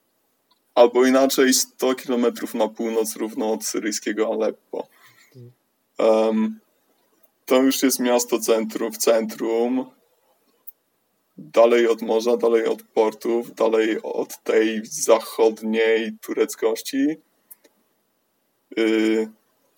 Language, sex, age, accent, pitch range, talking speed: Polish, male, 20-39, native, 115-140 Hz, 90 wpm